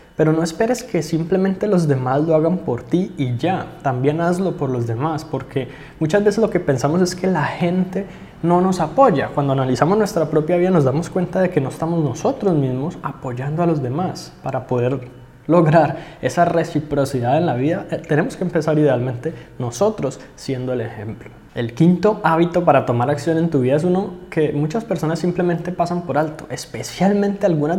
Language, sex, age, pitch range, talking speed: Spanish, male, 20-39, 135-175 Hz, 185 wpm